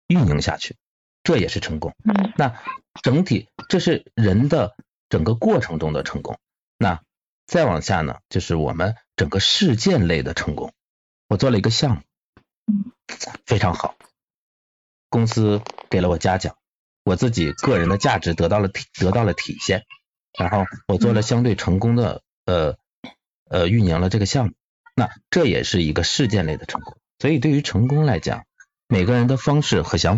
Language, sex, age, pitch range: Chinese, male, 50-69, 90-120 Hz